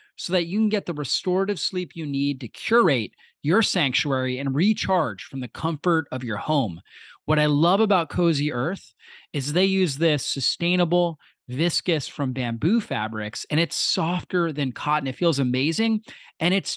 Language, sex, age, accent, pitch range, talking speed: English, male, 30-49, American, 140-180 Hz, 170 wpm